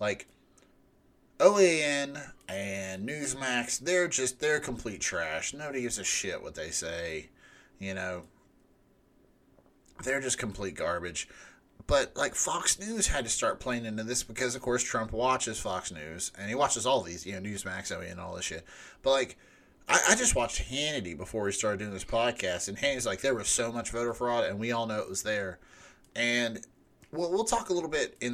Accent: American